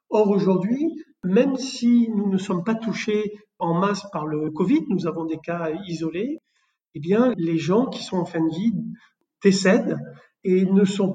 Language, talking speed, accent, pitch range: French, 180 wpm, French, 180-225 Hz